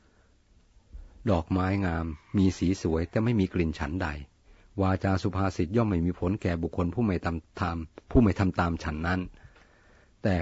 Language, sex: Thai, male